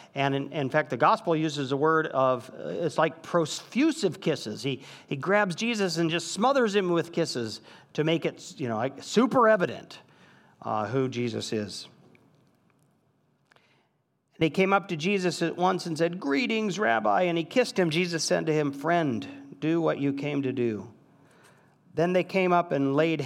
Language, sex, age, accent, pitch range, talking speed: English, male, 50-69, American, 130-175 Hz, 180 wpm